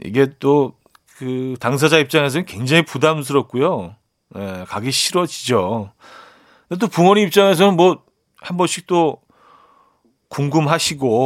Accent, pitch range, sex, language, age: native, 125-170 Hz, male, Korean, 40-59